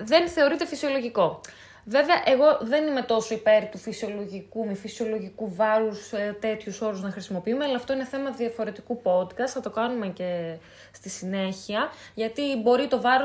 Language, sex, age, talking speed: Greek, female, 20-39, 160 wpm